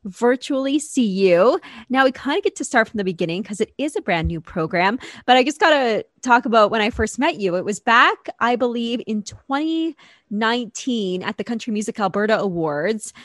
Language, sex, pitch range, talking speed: English, female, 195-260 Hz, 200 wpm